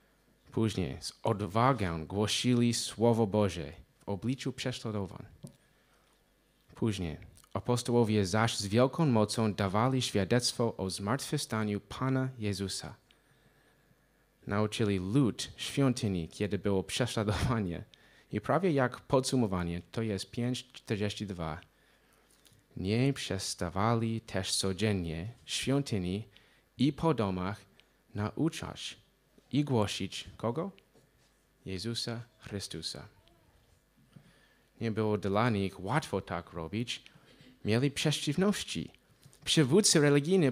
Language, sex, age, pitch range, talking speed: Polish, male, 30-49, 100-135 Hz, 85 wpm